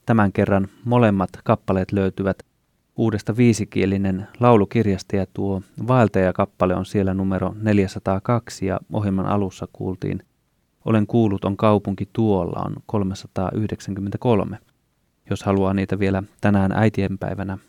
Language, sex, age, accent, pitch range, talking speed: Finnish, male, 30-49, native, 95-115 Hz, 110 wpm